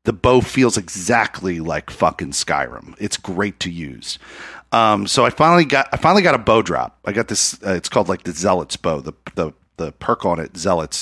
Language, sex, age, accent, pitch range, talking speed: English, male, 40-59, American, 95-130 Hz, 210 wpm